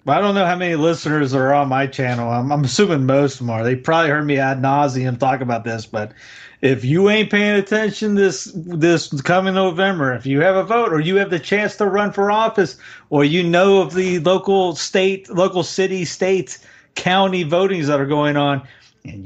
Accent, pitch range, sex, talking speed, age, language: American, 140-195 Hz, male, 210 wpm, 40-59, English